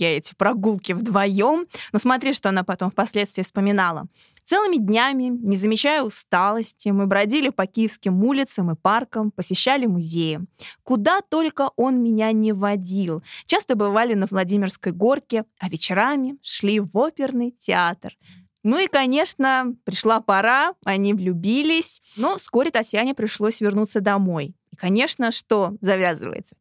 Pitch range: 195-270 Hz